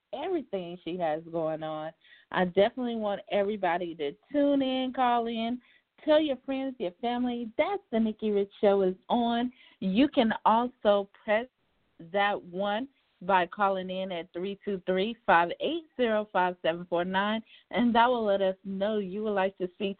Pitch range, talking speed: 180-240 Hz, 145 wpm